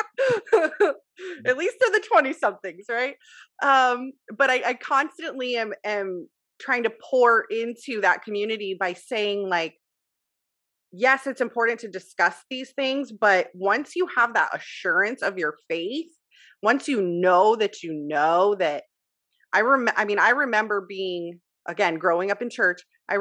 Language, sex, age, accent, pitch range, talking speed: English, female, 30-49, American, 185-270 Hz, 150 wpm